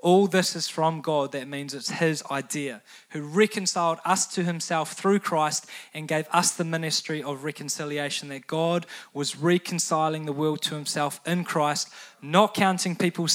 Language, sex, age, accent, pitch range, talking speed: English, male, 20-39, Australian, 150-175 Hz, 165 wpm